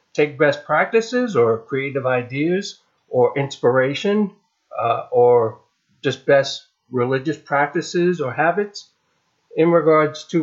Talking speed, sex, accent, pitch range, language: 110 wpm, male, American, 130-170 Hz, English